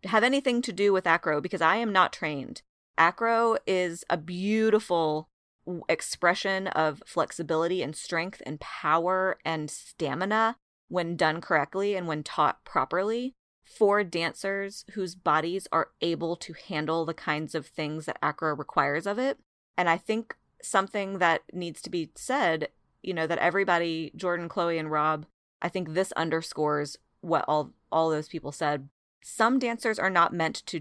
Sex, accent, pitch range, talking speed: female, American, 155-195 Hz, 160 wpm